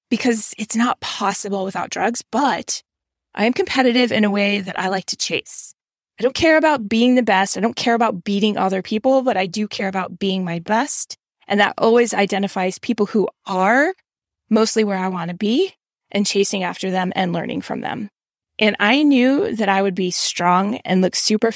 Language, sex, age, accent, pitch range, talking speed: English, female, 20-39, American, 195-245 Hz, 200 wpm